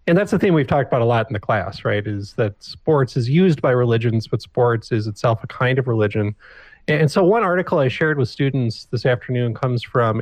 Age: 30-49